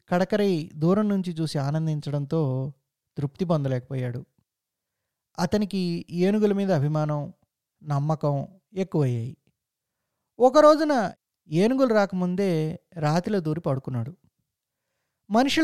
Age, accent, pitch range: 20-39, native, 145-195 Hz